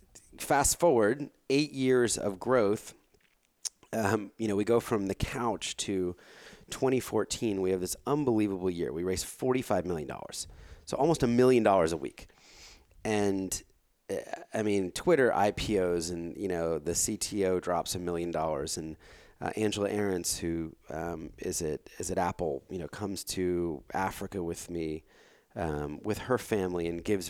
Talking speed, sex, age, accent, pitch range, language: 155 wpm, male, 30-49, American, 90-115 Hz, English